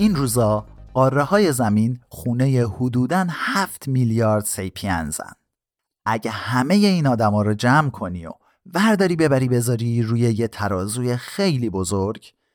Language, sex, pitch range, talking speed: Persian, male, 105-145 Hz, 135 wpm